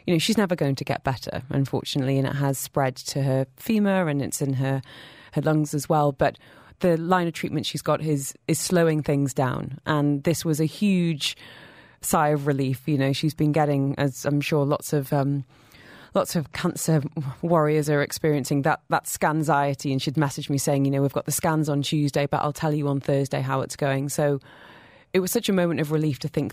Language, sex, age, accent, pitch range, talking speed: English, female, 20-39, British, 140-160 Hz, 215 wpm